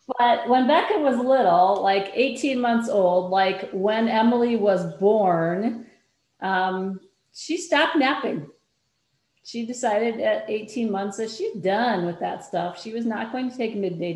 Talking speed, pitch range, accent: 155 wpm, 195-245 Hz, American